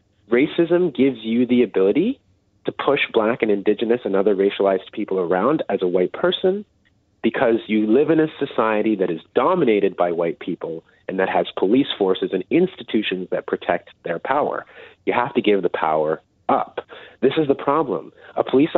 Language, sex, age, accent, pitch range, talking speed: English, male, 30-49, American, 105-150 Hz, 175 wpm